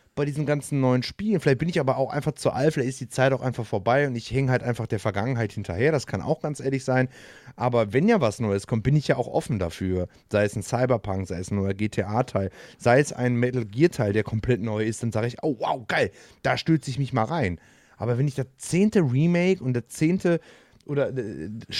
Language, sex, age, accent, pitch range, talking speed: German, male, 30-49, German, 115-155 Hz, 240 wpm